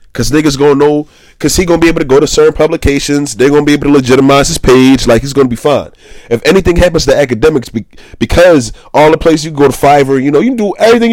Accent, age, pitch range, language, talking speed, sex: American, 30-49, 115-165 Hz, English, 255 wpm, male